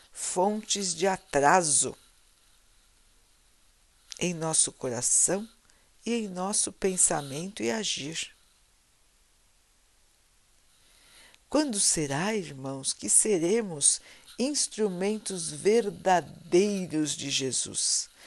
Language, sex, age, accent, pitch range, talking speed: Portuguese, female, 60-79, Brazilian, 125-200 Hz, 70 wpm